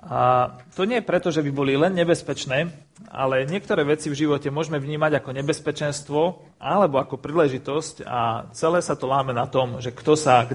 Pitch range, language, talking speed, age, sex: 130-165 Hz, Slovak, 190 wpm, 30-49, male